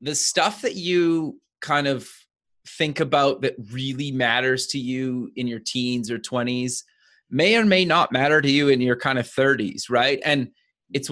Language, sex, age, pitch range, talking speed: English, male, 30-49, 125-150 Hz, 180 wpm